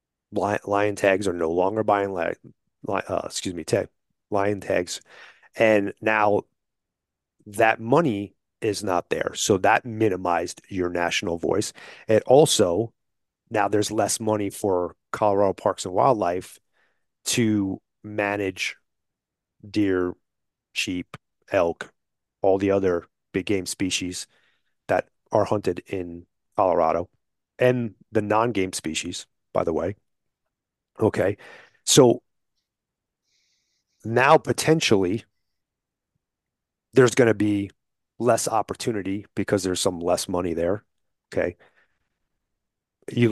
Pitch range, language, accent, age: 95-110 Hz, English, American, 30-49